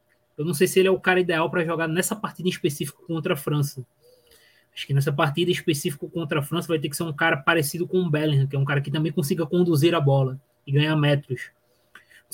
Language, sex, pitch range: Portuguese, male, 145-180 Hz